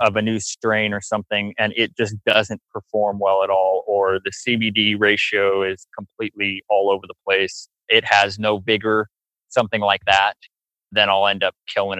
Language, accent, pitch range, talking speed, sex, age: English, American, 100-115 Hz, 180 wpm, male, 20-39